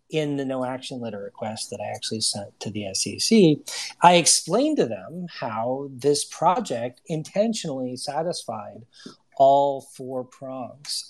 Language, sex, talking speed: English, male, 130 wpm